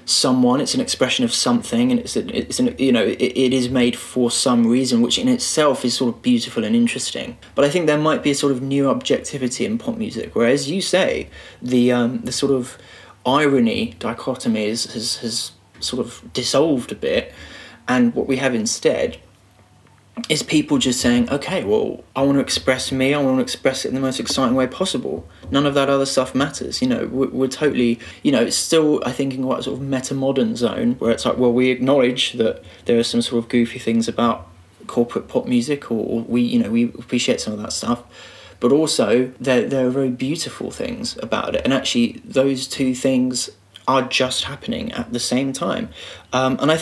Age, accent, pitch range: 20-39, British, 120-150 Hz